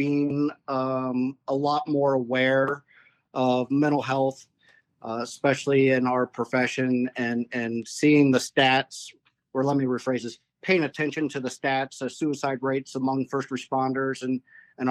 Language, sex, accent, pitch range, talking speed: English, male, American, 125-140 Hz, 150 wpm